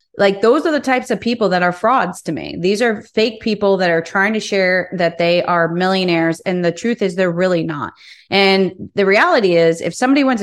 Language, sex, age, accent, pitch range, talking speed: English, female, 30-49, American, 175-220 Hz, 225 wpm